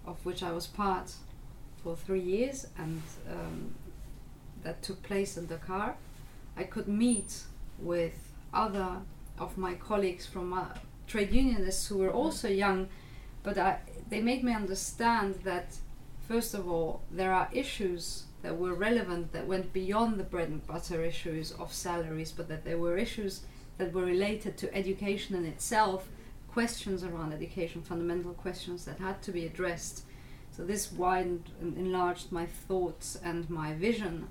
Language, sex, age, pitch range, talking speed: English, female, 30-49, 165-195 Hz, 155 wpm